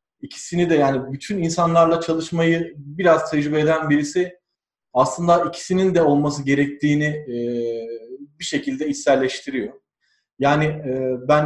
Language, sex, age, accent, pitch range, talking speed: Turkish, male, 40-59, native, 135-170 Hz, 105 wpm